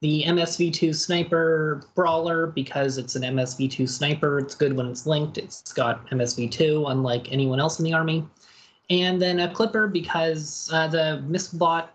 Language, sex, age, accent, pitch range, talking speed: English, male, 20-39, American, 140-175 Hz, 155 wpm